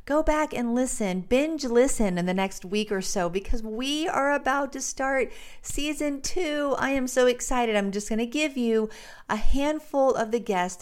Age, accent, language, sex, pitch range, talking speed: 50-69, American, English, female, 200-265 Hz, 195 wpm